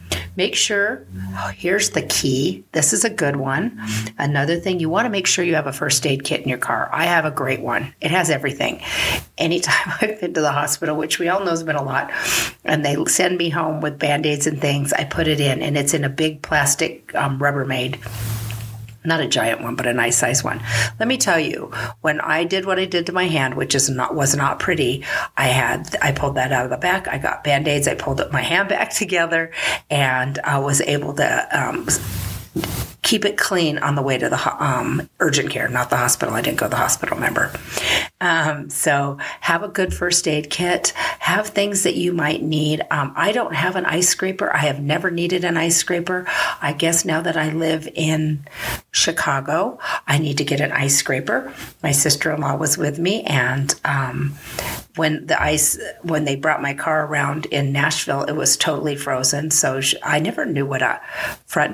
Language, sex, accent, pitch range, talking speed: English, female, American, 140-165 Hz, 210 wpm